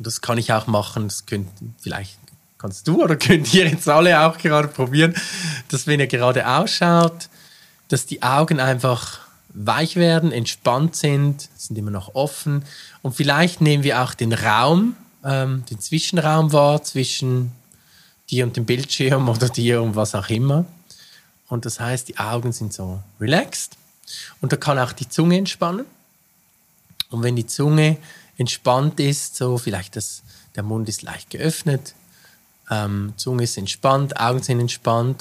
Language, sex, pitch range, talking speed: German, male, 115-160 Hz, 160 wpm